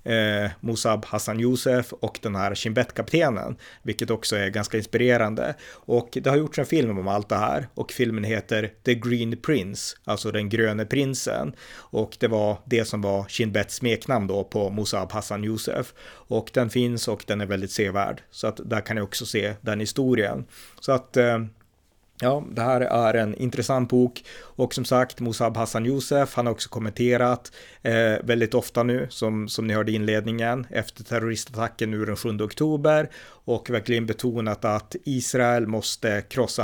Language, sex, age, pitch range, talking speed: Swedish, male, 30-49, 110-125 Hz, 170 wpm